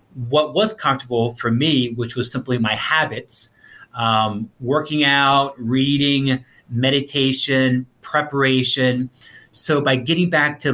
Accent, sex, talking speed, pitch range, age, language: American, male, 115 wpm, 115-140 Hz, 30-49, English